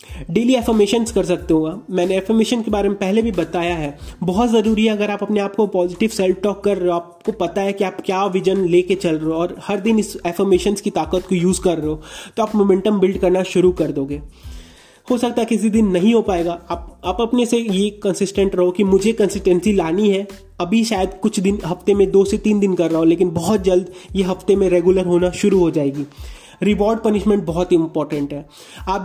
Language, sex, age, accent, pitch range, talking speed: Hindi, male, 20-39, native, 170-210 Hz, 185 wpm